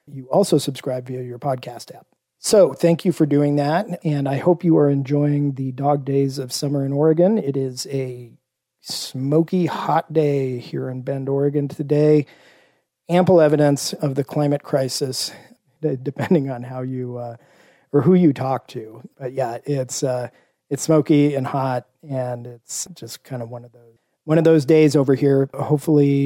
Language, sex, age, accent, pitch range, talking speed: English, male, 40-59, American, 130-155 Hz, 175 wpm